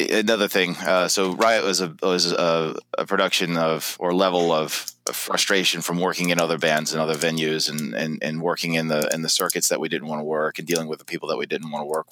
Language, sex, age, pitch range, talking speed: English, male, 30-49, 80-95 Hz, 250 wpm